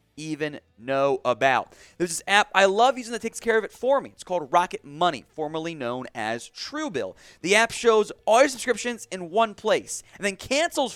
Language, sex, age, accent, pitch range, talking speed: English, male, 30-49, American, 135-210 Hz, 205 wpm